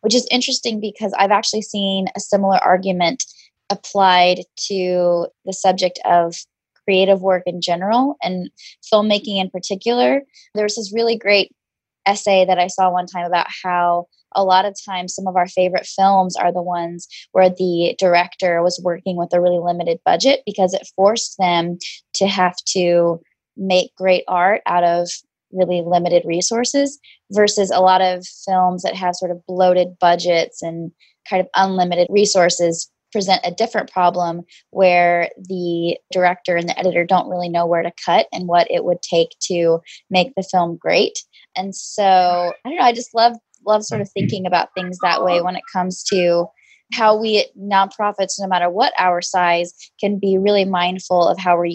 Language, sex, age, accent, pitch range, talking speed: English, female, 20-39, American, 175-200 Hz, 175 wpm